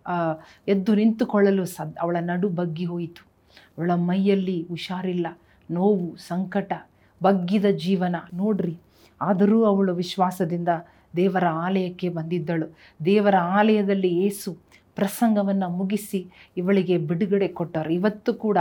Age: 40-59